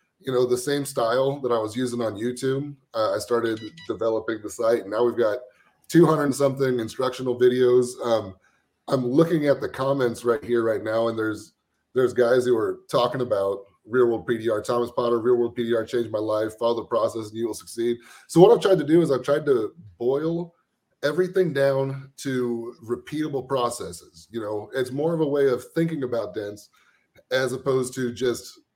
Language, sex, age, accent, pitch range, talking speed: English, male, 30-49, American, 115-140 Hz, 195 wpm